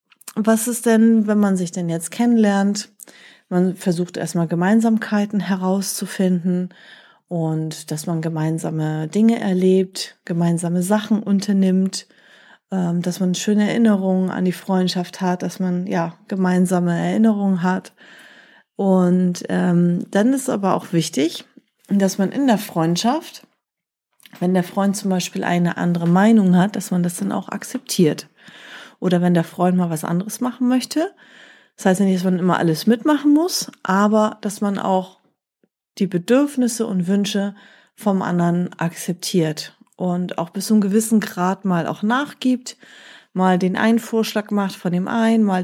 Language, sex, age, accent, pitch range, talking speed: German, female, 30-49, German, 180-215 Hz, 145 wpm